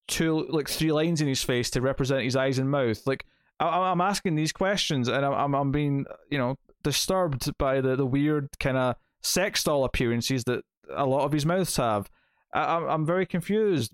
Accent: British